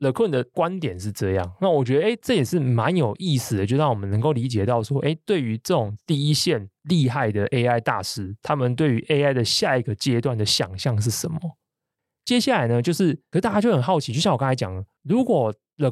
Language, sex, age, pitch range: Chinese, male, 20-39, 115-155 Hz